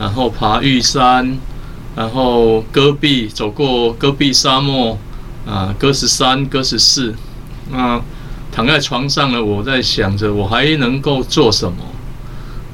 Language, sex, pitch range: Chinese, male, 115-140 Hz